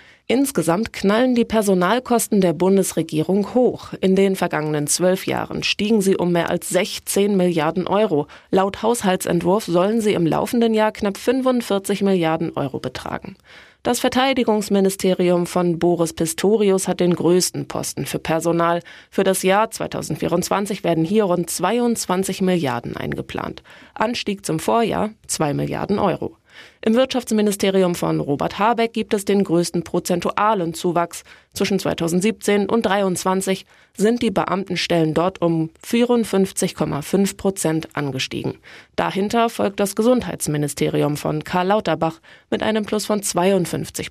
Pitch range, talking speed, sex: 170-215 Hz, 130 wpm, female